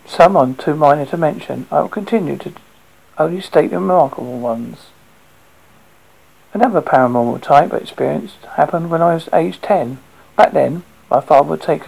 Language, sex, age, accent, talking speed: English, male, 50-69, British, 160 wpm